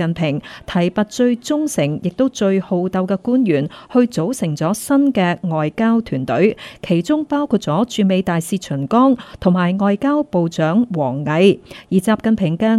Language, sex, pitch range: Chinese, female, 175-240 Hz